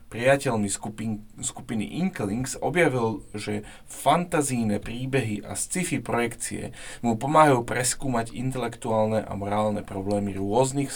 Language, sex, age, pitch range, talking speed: Slovak, male, 30-49, 105-130 Hz, 105 wpm